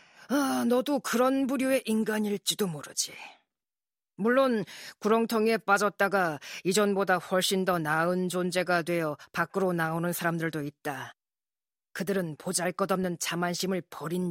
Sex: female